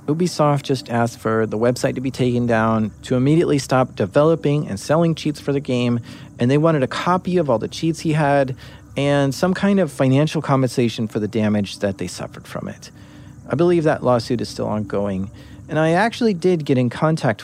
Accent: American